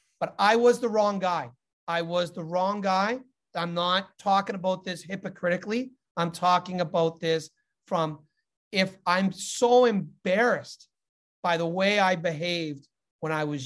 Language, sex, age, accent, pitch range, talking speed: English, male, 40-59, American, 170-235 Hz, 150 wpm